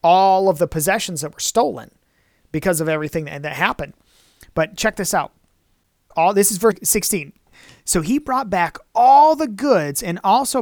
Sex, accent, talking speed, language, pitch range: male, American, 170 wpm, English, 160-235 Hz